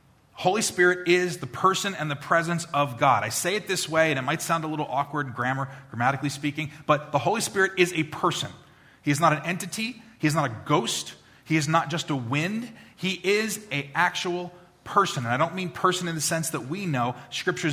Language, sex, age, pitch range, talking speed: English, male, 30-49, 135-170 Hz, 220 wpm